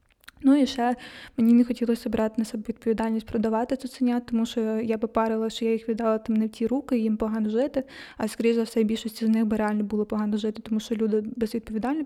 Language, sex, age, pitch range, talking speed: Ukrainian, female, 20-39, 225-250 Hz, 230 wpm